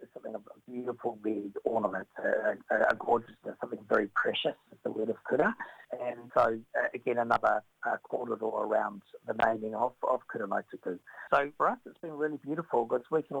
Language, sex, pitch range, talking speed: English, male, 115-145 Hz, 180 wpm